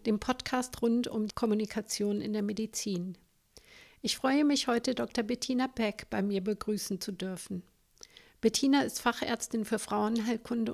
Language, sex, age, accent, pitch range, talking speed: German, female, 50-69, German, 210-240 Hz, 145 wpm